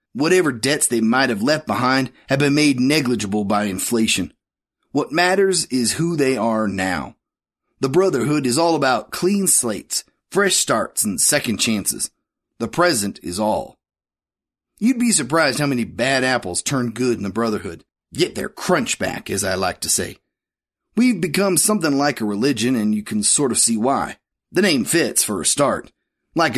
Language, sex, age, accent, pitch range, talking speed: English, male, 30-49, American, 115-165 Hz, 175 wpm